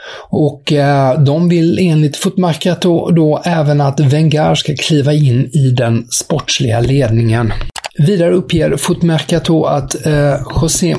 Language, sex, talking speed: English, male, 120 wpm